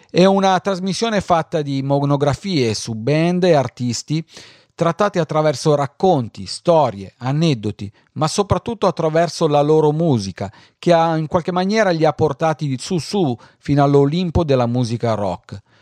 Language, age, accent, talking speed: Italian, 40-59, native, 135 wpm